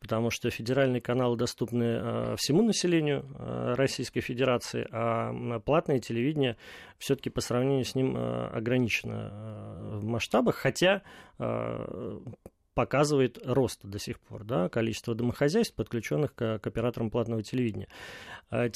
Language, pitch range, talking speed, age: Russian, 115-140 Hz, 130 wpm, 30-49